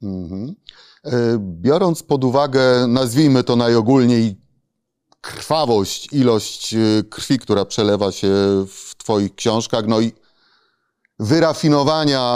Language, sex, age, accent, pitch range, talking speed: Polish, male, 30-49, native, 115-140 Hz, 85 wpm